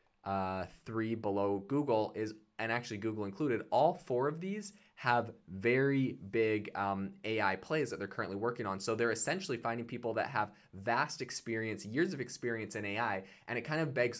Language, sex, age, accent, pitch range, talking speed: English, male, 20-39, American, 100-120 Hz, 180 wpm